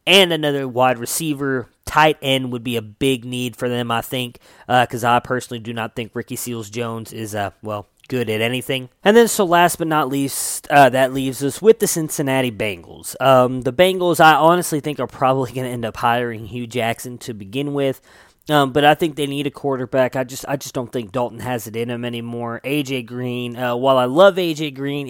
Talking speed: 220 wpm